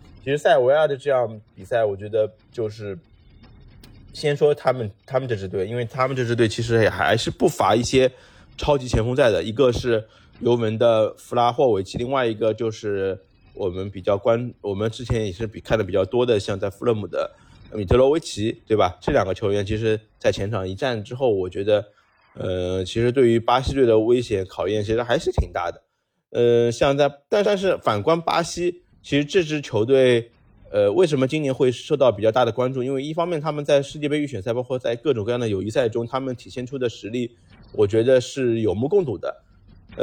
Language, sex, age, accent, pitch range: Chinese, male, 20-39, native, 110-140 Hz